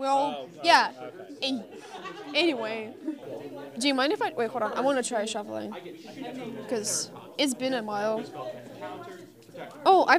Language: English